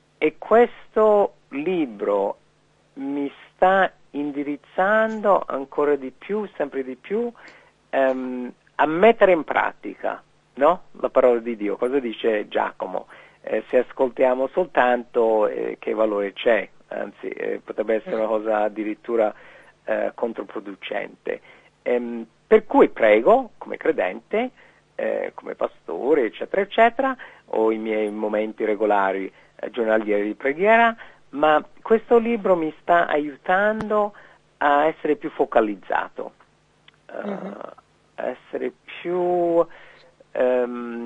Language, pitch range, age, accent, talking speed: Italian, 130-215 Hz, 50-69, native, 110 wpm